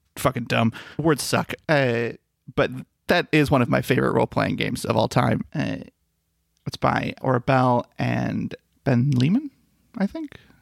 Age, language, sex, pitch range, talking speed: 30-49, English, male, 120-150 Hz, 145 wpm